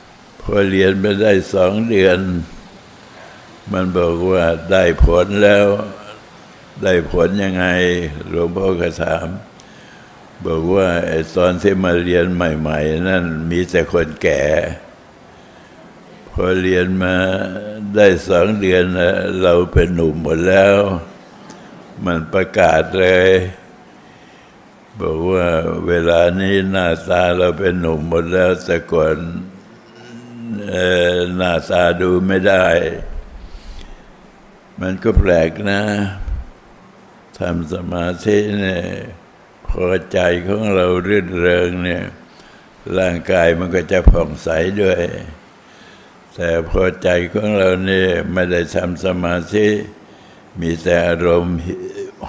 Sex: male